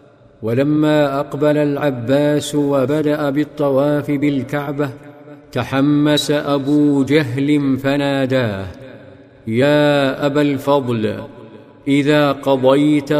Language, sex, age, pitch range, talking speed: Arabic, male, 50-69, 130-145 Hz, 70 wpm